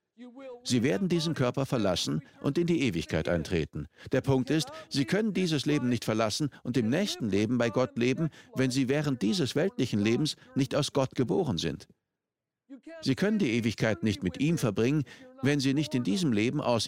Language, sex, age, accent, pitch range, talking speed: German, male, 50-69, German, 120-165 Hz, 185 wpm